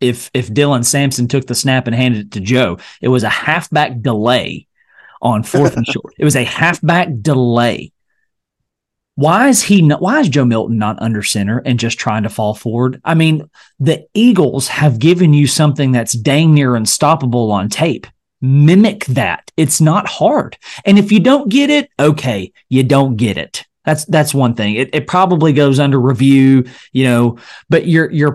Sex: male